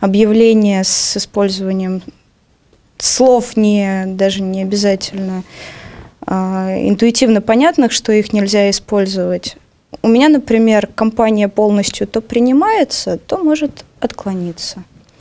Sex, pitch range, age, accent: female, 200-265 Hz, 20-39, native